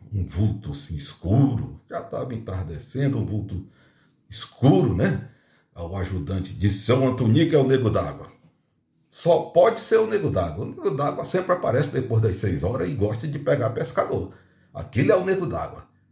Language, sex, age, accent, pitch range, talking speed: Portuguese, male, 60-79, Brazilian, 105-140 Hz, 170 wpm